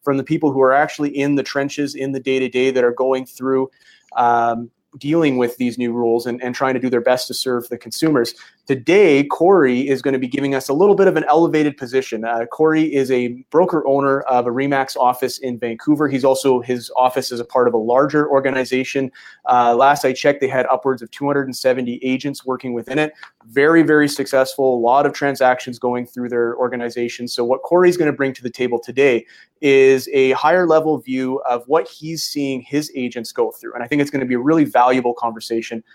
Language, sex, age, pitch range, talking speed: English, male, 30-49, 125-150 Hz, 215 wpm